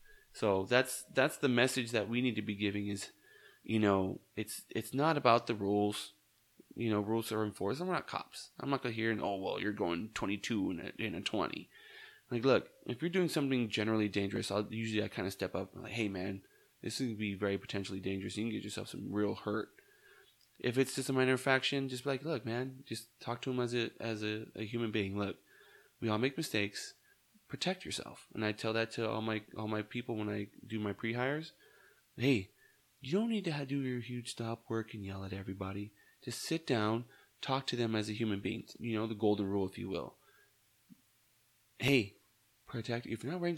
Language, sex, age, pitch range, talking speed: English, male, 20-39, 105-130 Hz, 220 wpm